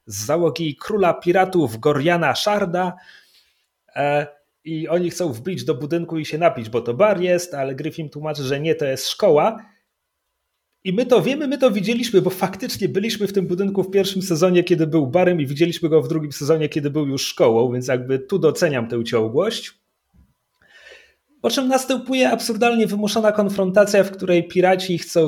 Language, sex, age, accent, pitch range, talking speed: Polish, male, 30-49, native, 140-185 Hz, 170 wpm